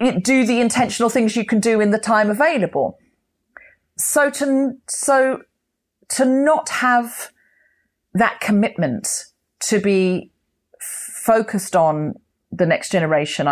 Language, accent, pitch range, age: English, British, 175-235 Hz, 40-59